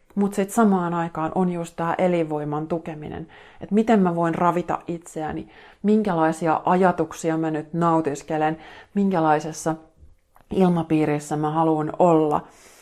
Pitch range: 155-185 Hz